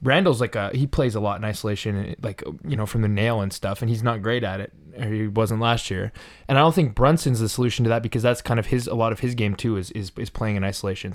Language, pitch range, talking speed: English, 105-130 Hz, 290 wpm